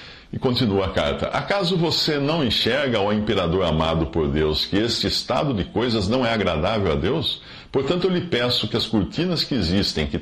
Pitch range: 85-125 Hz